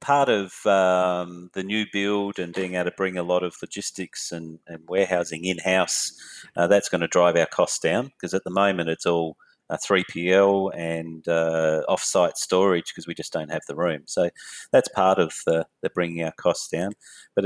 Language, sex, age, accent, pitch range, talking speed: English, male, 30-49, Australian, 90-105 Hz, 195 wpm